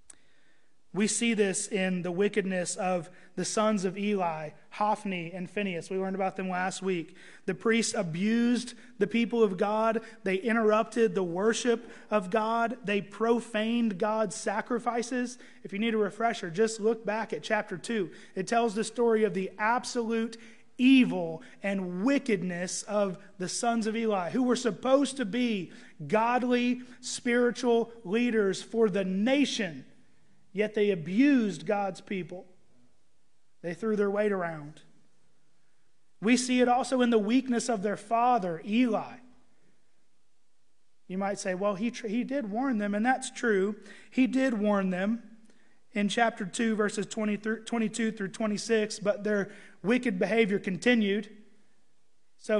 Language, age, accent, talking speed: English, 30-49, American, 145 wpm